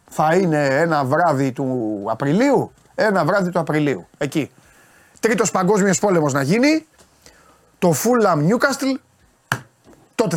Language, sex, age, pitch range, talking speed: Greek, male, 30-49, 125-180 Hz, 115 wpm